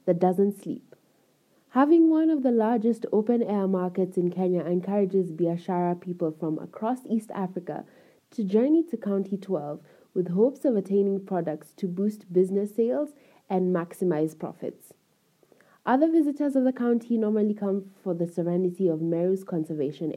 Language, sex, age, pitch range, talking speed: English, female, 20-39, 175-230 Hz, 150 wpm